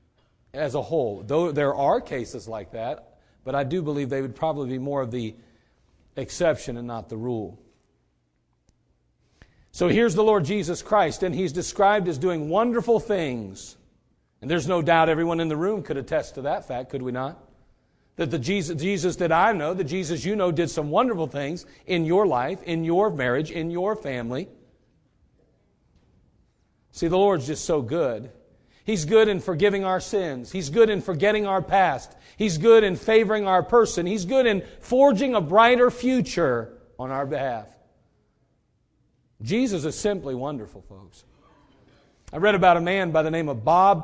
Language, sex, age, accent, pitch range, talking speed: English, male, 40-59, American, 135-200 Hz, 175 wpm